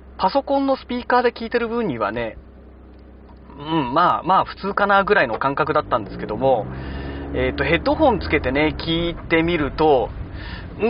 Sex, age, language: male, 40-59, Japanese